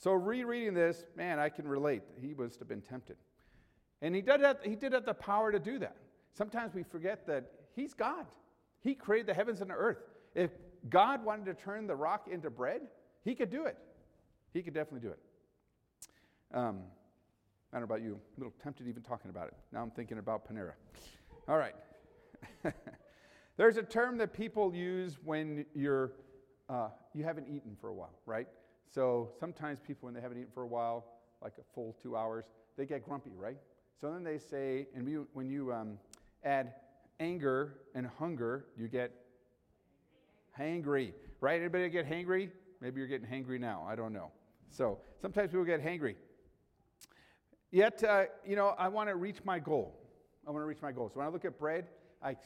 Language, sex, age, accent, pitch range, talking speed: English, male, 50-69, American, 120-180 Hz, 190 wpm